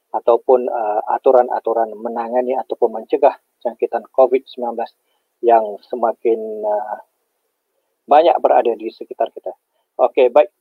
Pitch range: 120-165 Hz